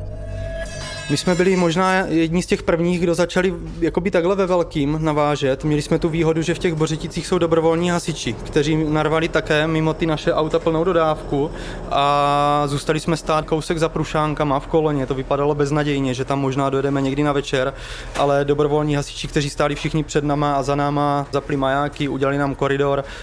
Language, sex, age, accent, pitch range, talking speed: Czech, male, 20-39, native, 135-155 Hz, 180 wpm